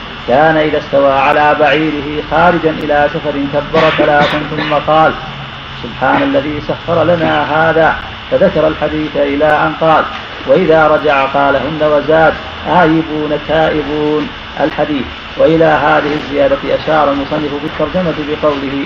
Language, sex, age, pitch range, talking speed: Arabic, male, 50-69, 145-155 Hz, 120 wpm